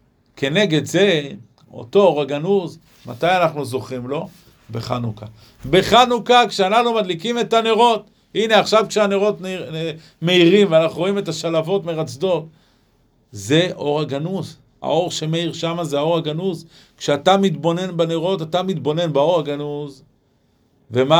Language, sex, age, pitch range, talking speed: Hebrew, male, 50-69, 140-185 Hz, 120 wpm